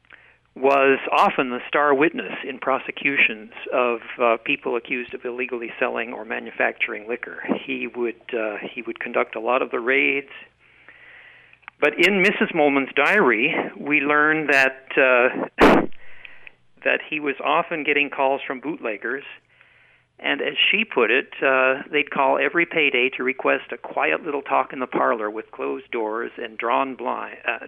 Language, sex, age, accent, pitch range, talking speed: English, male, 50-69, American, 120-145 Hz, 150 wpm